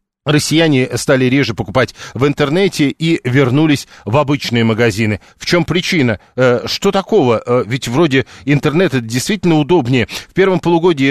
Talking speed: 130 wpm